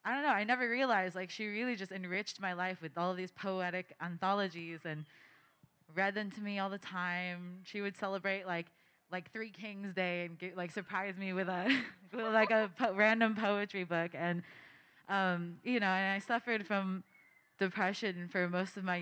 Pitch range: 170-200 Hz